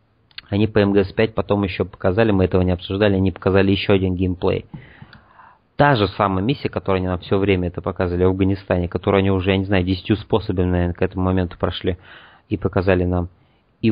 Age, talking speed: 30-49, 195 wpm